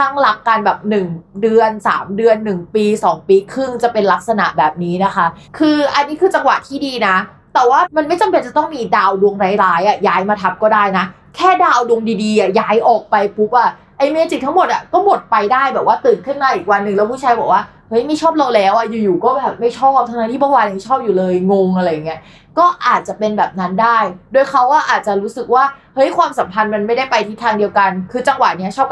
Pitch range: 200-265 Hz